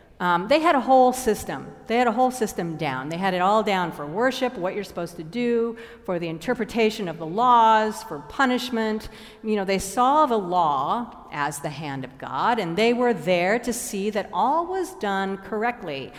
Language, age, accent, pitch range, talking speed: English, 50-69, American, 175-245 Hz, 200 wpm